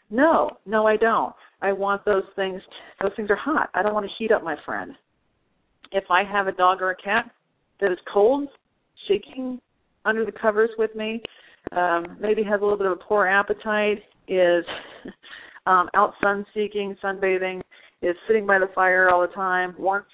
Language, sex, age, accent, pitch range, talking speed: English, female, 40-59, American, 185-240 Hz, 185 wpm